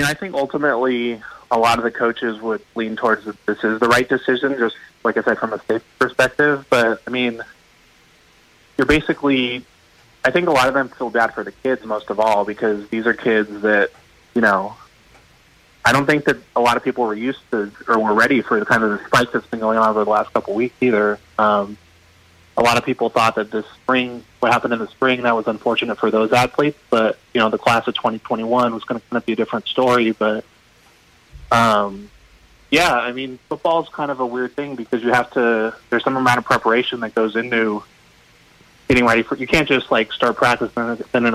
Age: 20-39